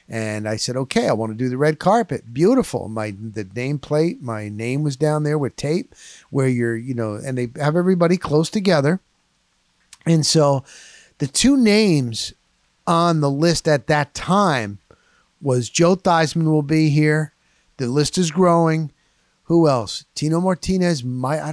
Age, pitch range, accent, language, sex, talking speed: 50-69, 130-175 Hz, American, English, male, 165 wpm